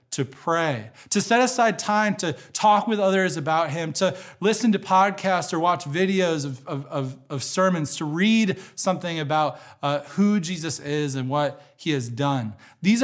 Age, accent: 20-39, American